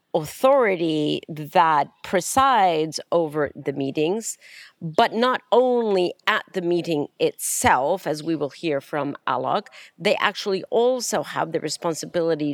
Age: 50-69